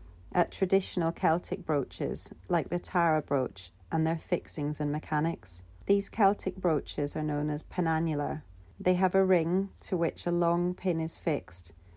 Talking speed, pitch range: 155 wpm, 150-175 Hz